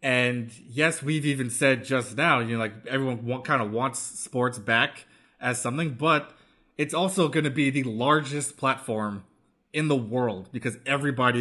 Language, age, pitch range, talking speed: English, 20-39, 120-145 Hz, 170 wpm